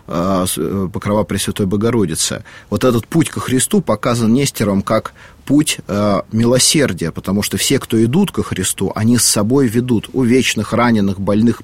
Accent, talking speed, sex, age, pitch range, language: native, 150 wpm, male, 30-49, 100-125 Hz, Russian